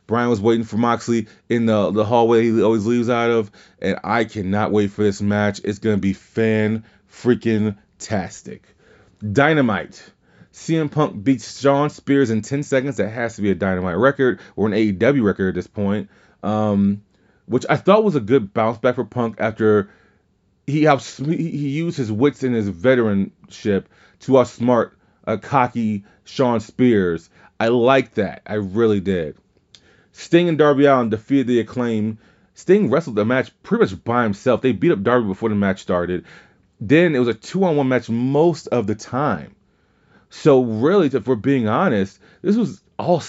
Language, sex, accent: English, male, American